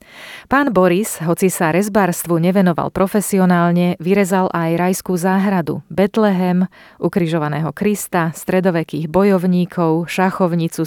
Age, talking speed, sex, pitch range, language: 30-49, 95 wpm, female, 170-205 Hz, Slovak